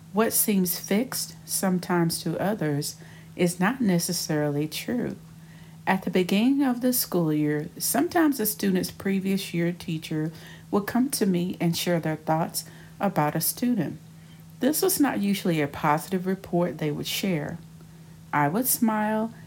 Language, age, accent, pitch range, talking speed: English, 50-69, American, 160-190 Hz, 145 wpm